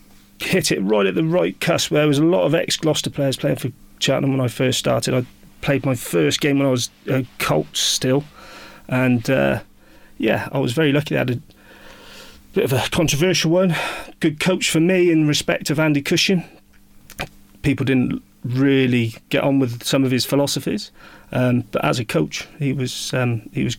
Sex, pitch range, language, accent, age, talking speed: male, 125-150 Hz, English, British, 30-49, 195 wpm